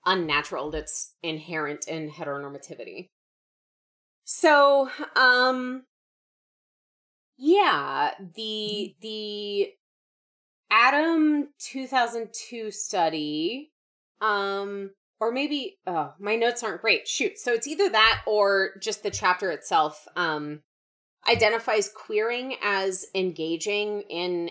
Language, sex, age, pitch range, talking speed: English, female, 30-49, 170-265 Hz, 95 wpm